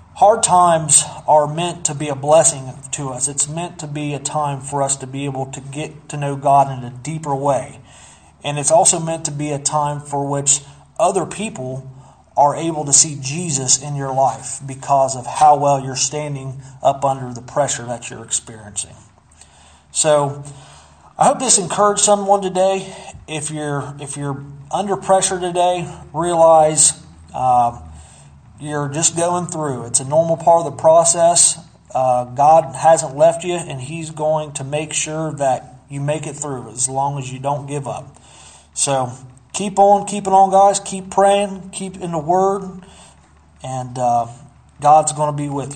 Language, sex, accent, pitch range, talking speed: English, male, American, 130-165 Hz, 175 wpm